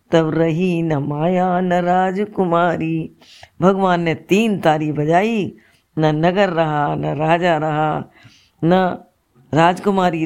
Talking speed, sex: 110 wpm, female